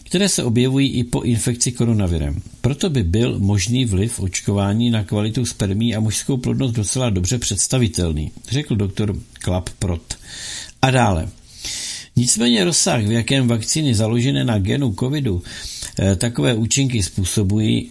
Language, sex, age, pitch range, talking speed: Czech, male, 60-79, 100-130 Hz, 130 wpm